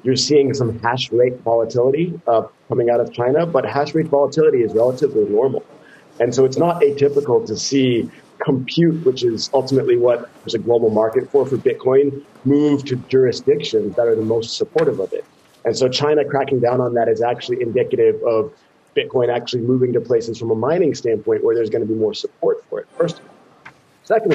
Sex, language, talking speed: male, English, 190 wpm